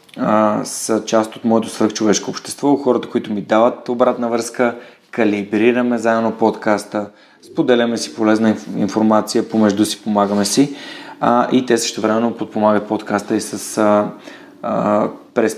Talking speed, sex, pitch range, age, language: 130 wpm, male, 105-125 Hz, 30-49, Bulgarian